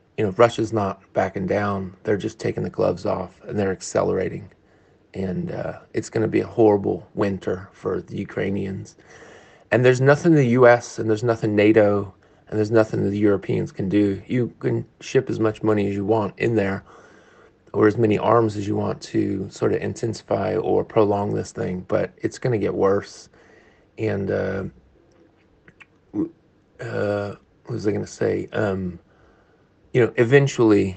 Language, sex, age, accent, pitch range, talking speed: English, male, 30-49, American, 95-110 Hz, 170 wpm